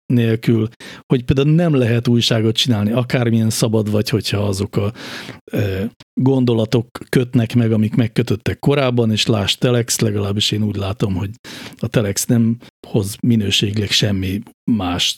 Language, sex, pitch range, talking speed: Hungarian, male, 105-130 Hz, 135 wpm